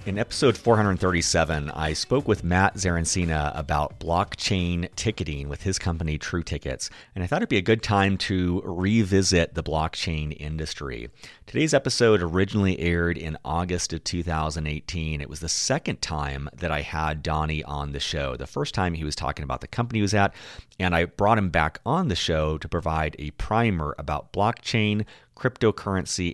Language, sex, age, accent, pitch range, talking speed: English, male, 30-49, American, 80-100 Hz, 175 wpm